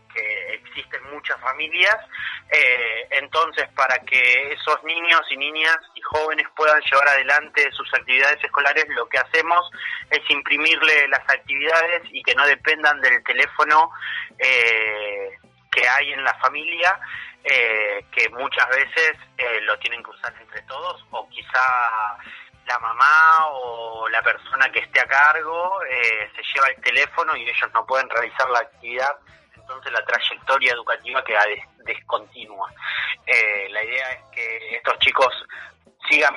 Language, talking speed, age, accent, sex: Spanish, 145 wpm, 30-49, Argentinian, male